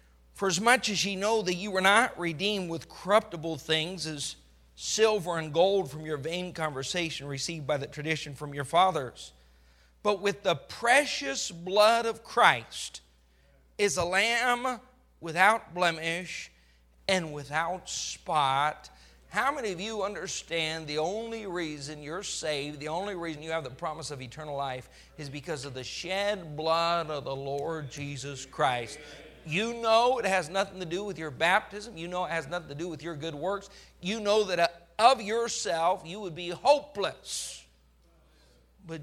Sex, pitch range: male, 145-195 Hz